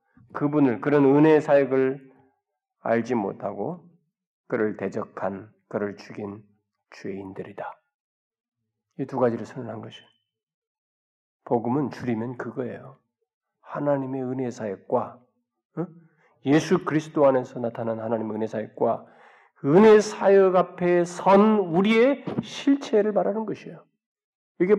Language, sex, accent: Korean, male, native